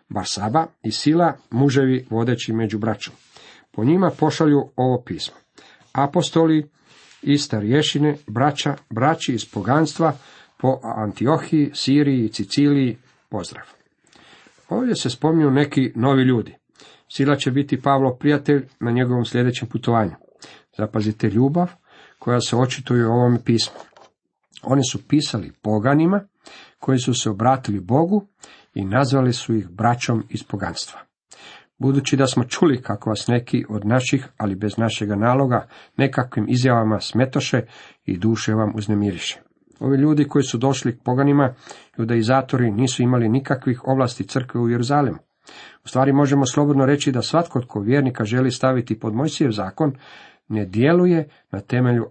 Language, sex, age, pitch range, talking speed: Croatian, male, 50-69, 115-140 Hz, 135 wpm